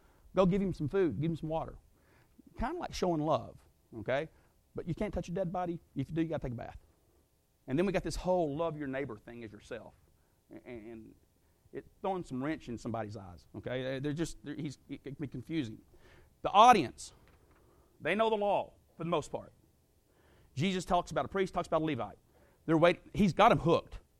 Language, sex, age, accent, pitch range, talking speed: English, male, 40-59, American, 130-180 Hz, 210 wpm